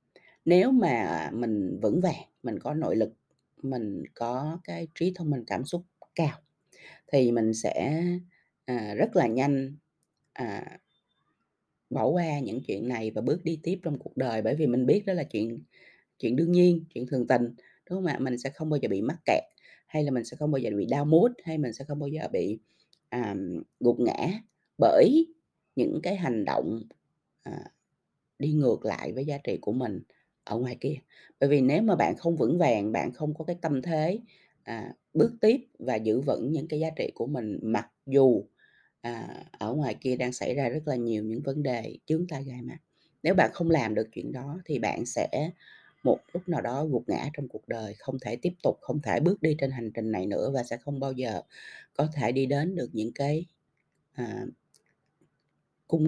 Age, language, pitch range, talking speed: 20-39, Vietnamese, 120-165 Hz, 200 wpm